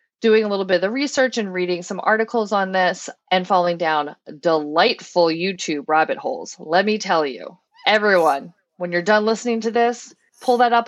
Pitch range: 170-230 Hz